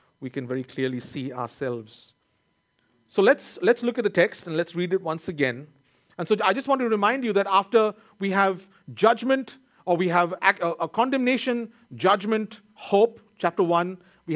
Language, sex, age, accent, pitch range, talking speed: English, male, 50-69, Indian, 135-185 Hz, 175 wpm